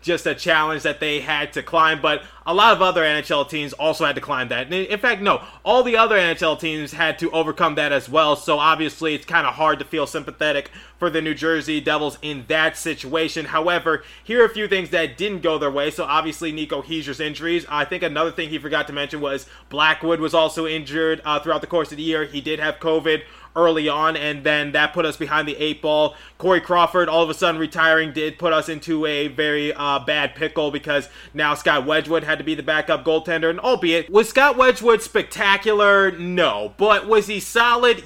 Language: English